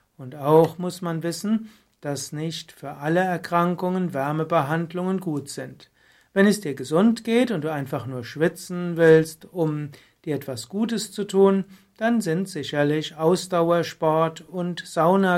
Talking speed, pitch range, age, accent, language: 140 wpm, 145-180 Hz, 60-79, German, German